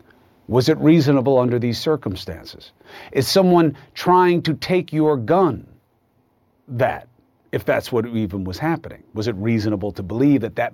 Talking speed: 150 wpm